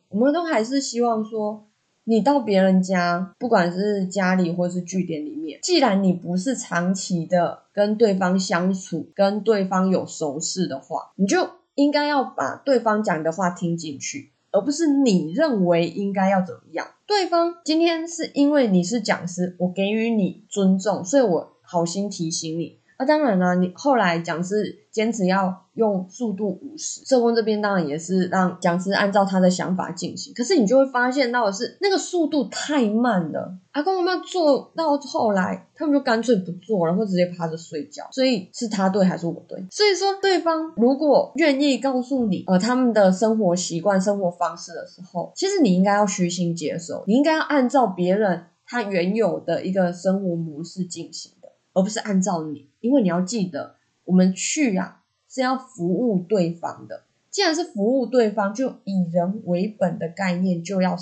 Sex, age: female, 20-39